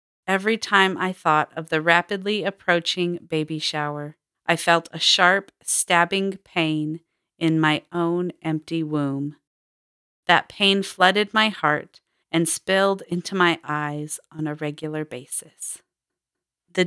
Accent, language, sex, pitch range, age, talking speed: American, English, female, 165-195 Hz, 40-59, 130 wpm